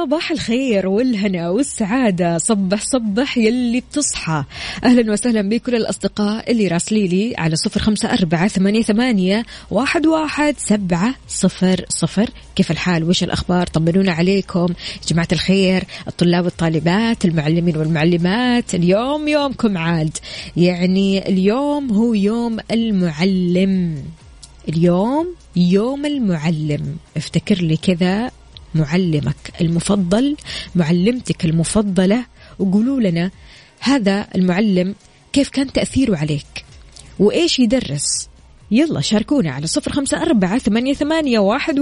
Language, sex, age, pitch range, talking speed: Arabic, female, 20-39, 175-240 Hz, 95 wpm